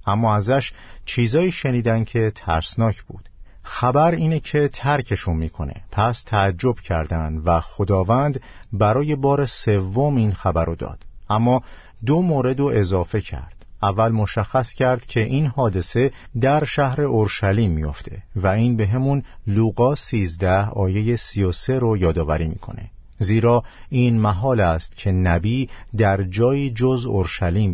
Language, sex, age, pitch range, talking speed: Persian, male, 50-69, 95-125 Hz, 130 wpm